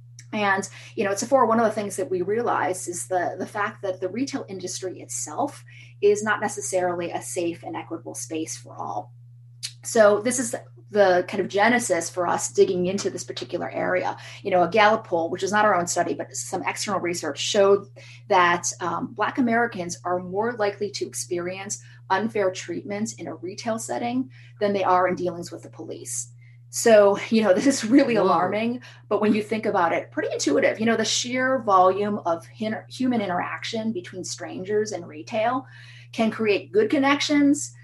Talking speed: 180 wpm